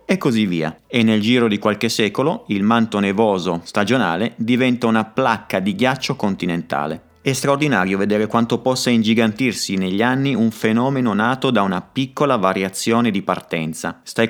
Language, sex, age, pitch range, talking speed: Italian, male, 30-49, 100-125 Hz, 155 wpm